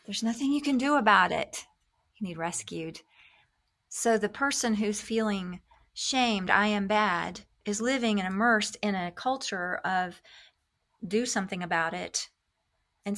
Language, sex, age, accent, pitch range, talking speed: English, female, 40-59, American, 180-225 Hz, 145 wpm